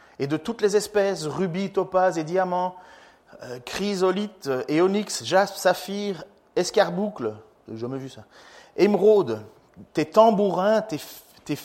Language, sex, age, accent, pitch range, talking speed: French, male, 40-59, French, 180-230 Hz, 130 wpm